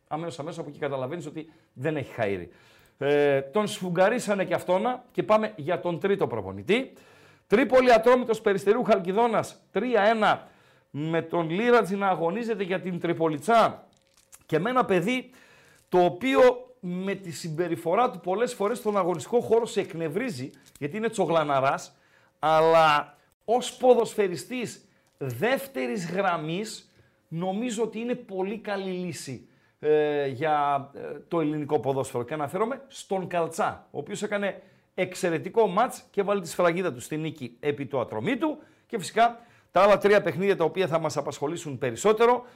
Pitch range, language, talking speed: 160-225 Hz, Greek, 140 wpm